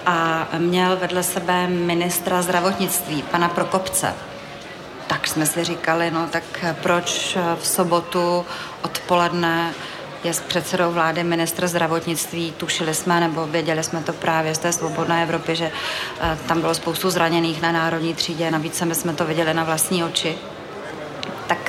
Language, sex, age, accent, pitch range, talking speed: Czech, female, 30-49, native, 165-180 Hz, 145 wpm